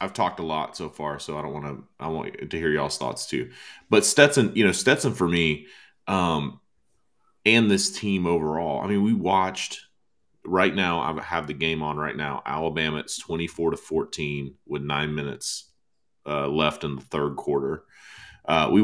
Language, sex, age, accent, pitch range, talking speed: English, male, 30-49, American, 75-95 Hz, 180 wpm